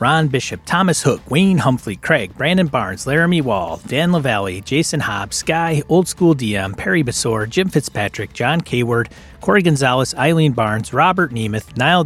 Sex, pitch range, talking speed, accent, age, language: male, 115-160 Hz, 160 wpm, American, 30-49, English